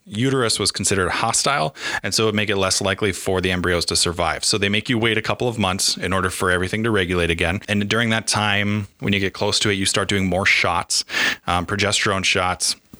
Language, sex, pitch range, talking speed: English, male, 95-115 Hz, 235 wpm